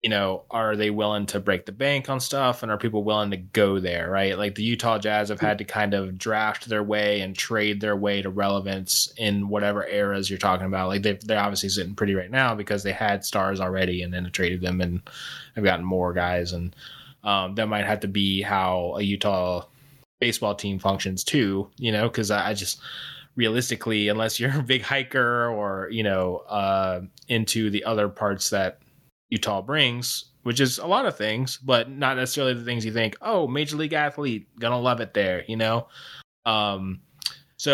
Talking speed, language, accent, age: 200 wpm, English, American, 20-39